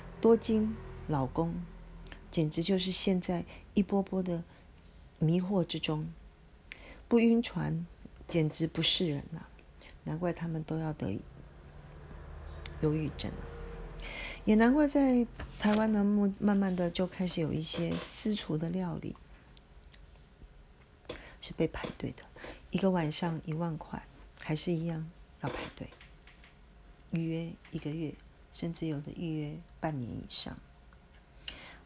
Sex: female